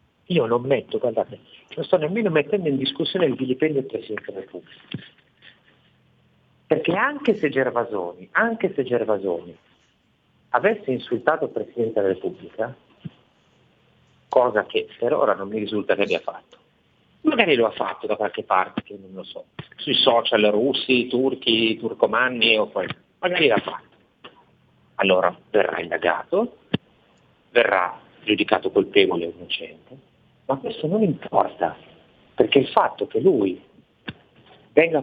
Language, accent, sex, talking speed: Italian, native, male, 130 wpm